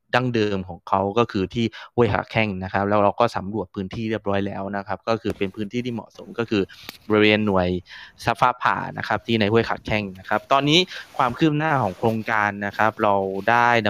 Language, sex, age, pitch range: Thai, male, 20-39, 100-120 Hz